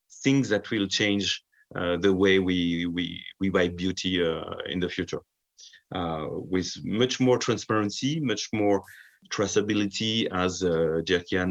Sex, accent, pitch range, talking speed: male, French, 85-100 Hz, 135 wpm